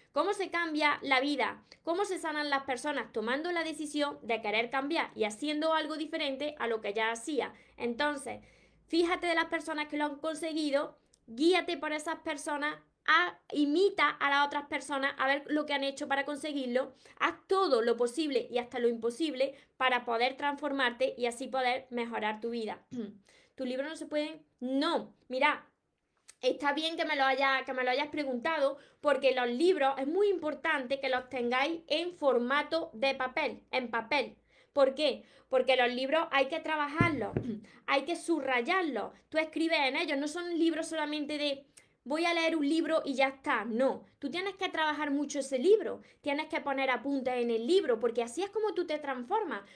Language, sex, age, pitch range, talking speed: Spanish, female, 20-39, 260-320 Hz, 180 wpm